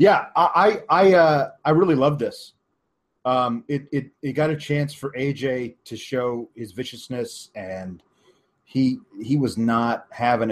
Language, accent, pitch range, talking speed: English, American, 120-150 Hz, 155 wpm